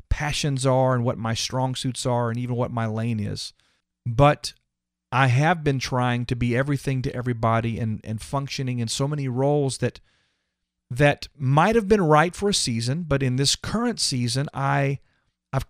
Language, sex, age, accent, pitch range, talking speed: English, male, 40-59, American, 120-155 Hz, 180 wpm